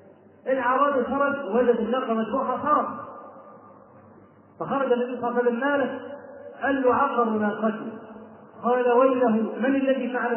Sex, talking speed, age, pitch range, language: male, 115 wpm, 40-59, 215-255 Hz, Arabic